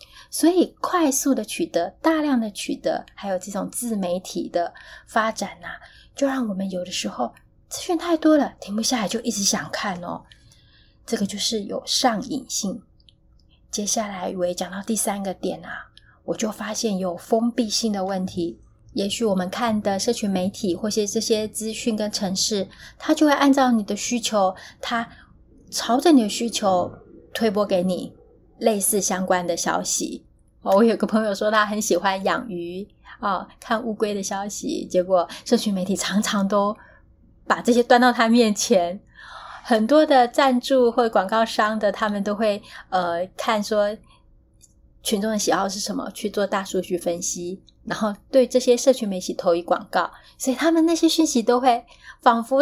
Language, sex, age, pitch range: Chinese, female, 20-39, 190-245 Hz